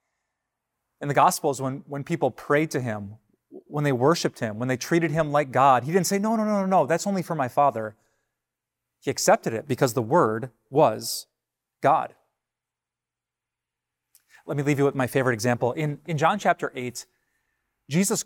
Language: English